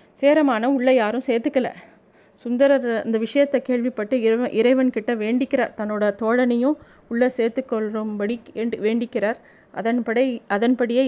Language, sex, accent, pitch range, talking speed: Tamil, female, native, 220-260 Hz, 95 wpm